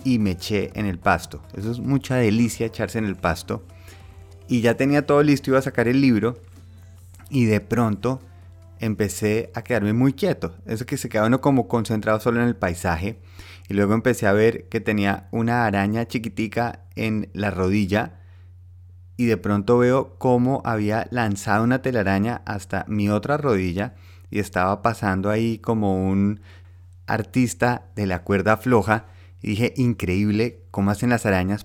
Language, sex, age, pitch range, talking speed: Spanish, male, 30-49, 90-115 Hz, 165 wpm